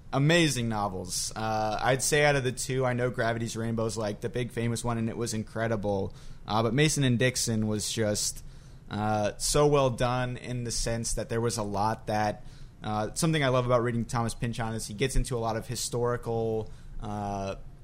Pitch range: 110-130 Hz